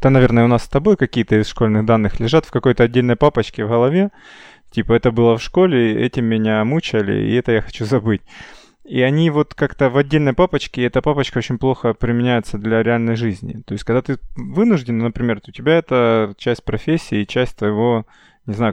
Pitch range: 110-130 Hz